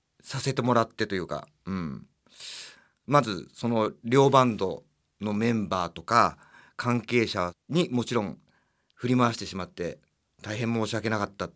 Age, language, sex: 40-59, Japanese, male